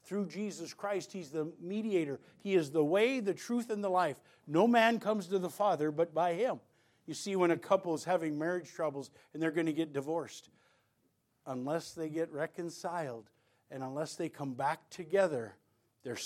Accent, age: American, 50-69